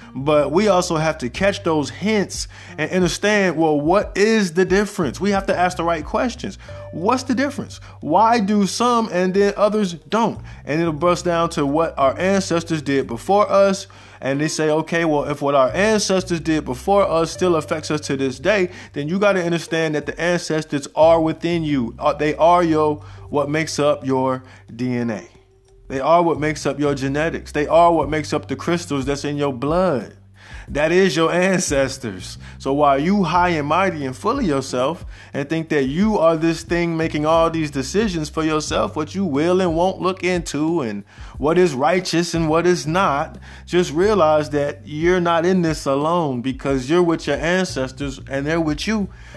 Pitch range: 140-185 Hz